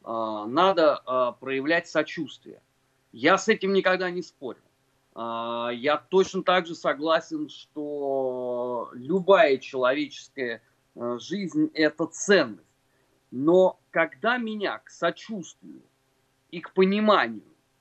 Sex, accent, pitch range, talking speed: male, native, 140-205 Hz, 95 wpm